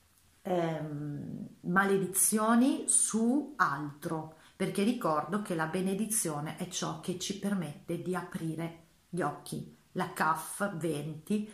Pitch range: 170-215 Hz